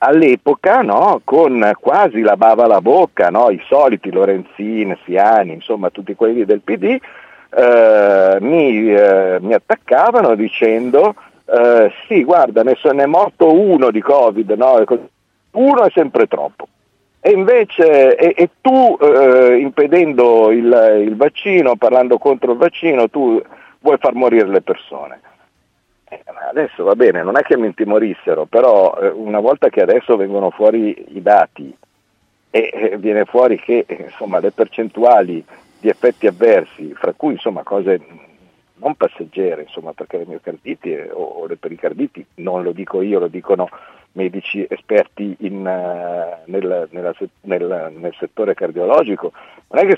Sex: male